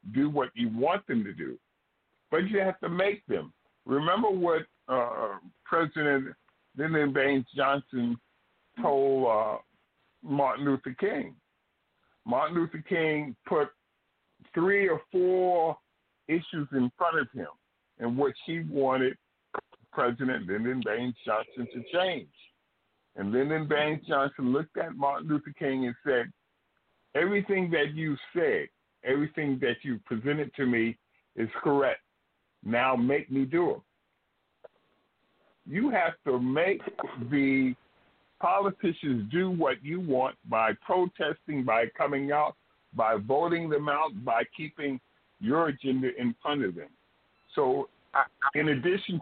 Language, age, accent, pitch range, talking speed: English, 50-69, American, 130-165 Hz, 130 wpm